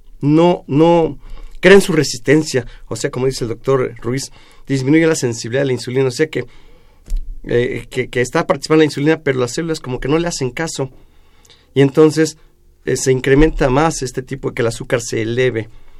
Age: 40-59